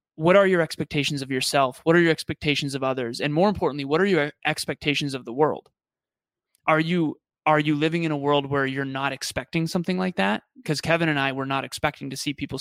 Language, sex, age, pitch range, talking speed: English, male, 20-39, 135-165 Hz, 225 wpm